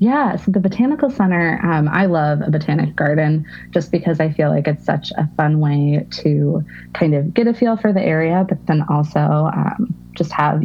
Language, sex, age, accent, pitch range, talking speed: English, female, 20-39, American, 150-185 Hz, 205 wpm